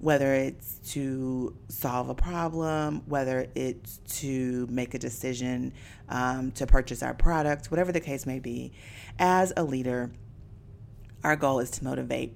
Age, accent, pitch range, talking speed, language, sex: 30-49, American, 120-145 Hz, 145 wpm, English, female